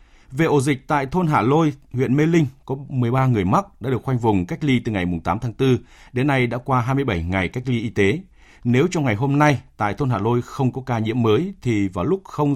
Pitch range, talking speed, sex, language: 105-145 Hz, 260 wpm, male, Vietnamese